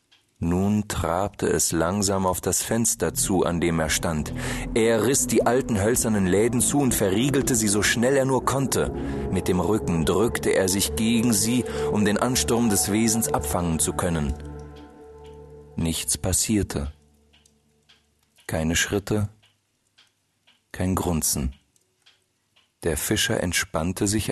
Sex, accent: male, German